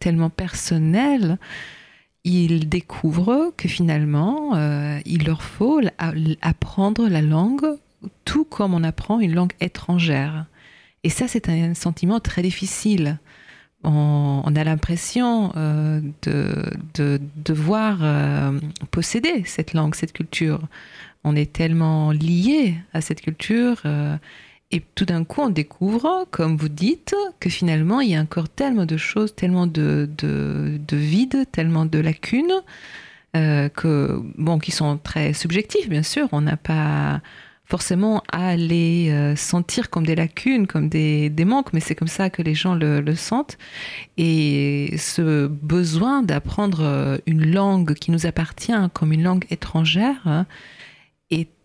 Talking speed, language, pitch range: 145 wpm, French, 155-190 Hz